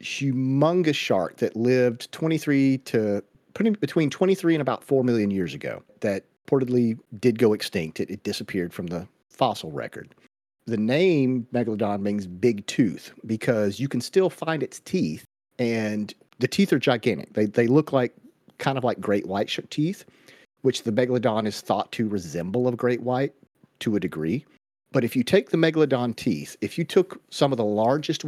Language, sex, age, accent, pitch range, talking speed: English, male, 40-59, American, 110-150 Hz, 170 wpm